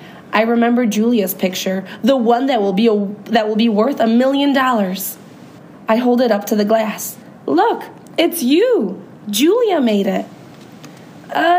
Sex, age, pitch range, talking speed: female, 20-39, 205-300 Hz, 160 wpm